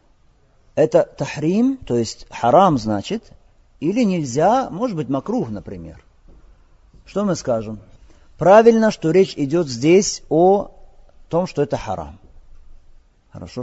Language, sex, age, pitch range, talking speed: Russian, male, 50-69, 120-180 Hz, 115 wpm